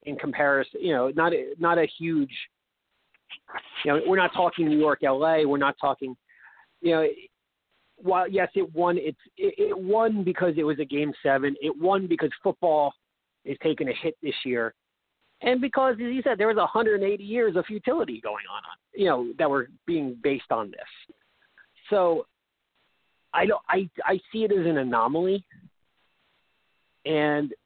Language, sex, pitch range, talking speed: English, male, 140-195 Hz, 170 wpm